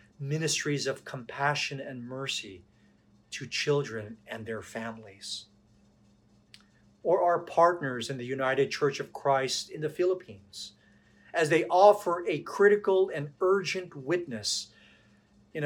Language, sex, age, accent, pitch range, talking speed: English, male, 40-59, American, 105-145 Hz, 120 wpm